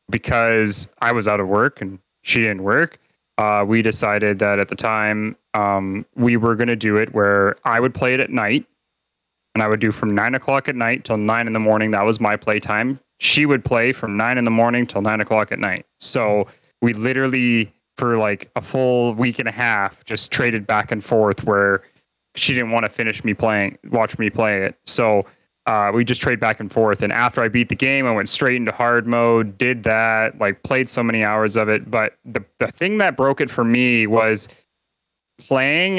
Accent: American